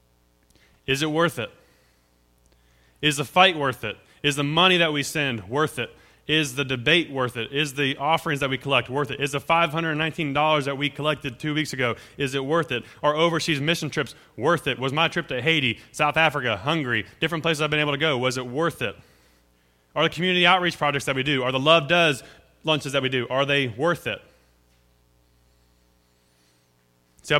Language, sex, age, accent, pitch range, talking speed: English, male, 30-49, American, 100-150 Hz, 195 wpm